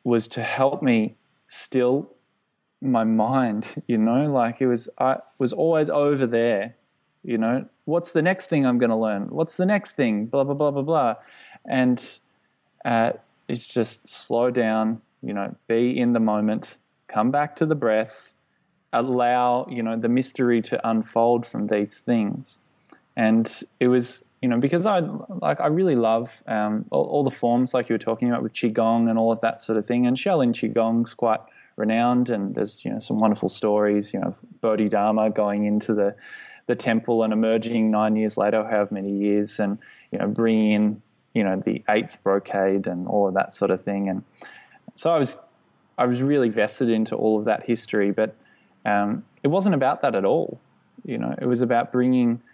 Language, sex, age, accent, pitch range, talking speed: English, male, 20-39, Australian, 110-125 Hz, 190 wpm